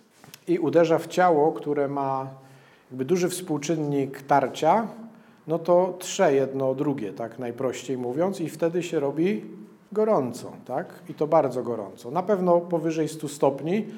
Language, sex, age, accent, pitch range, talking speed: Polish, male, 40-59, native, 140-180 Hz, 140 wpm